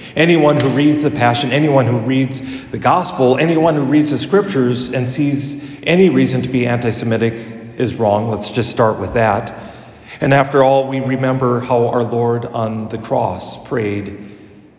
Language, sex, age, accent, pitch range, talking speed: English, male, 40-59, American, 120-165 Hz, 165 wpm